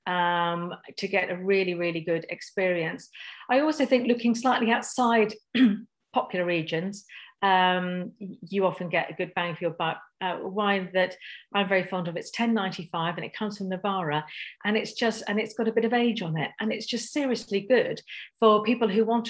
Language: English